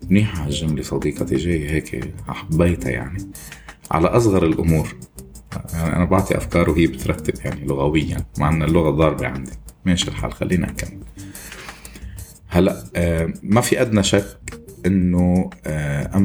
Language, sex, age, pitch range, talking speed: Arabic, male, 30-49, 80-100 Hz, 130 wpm